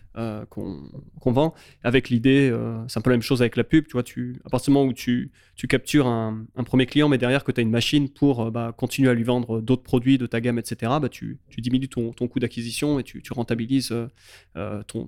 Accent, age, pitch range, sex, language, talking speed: French, 20-39, 115-135 Hz, male, French, 260 wpm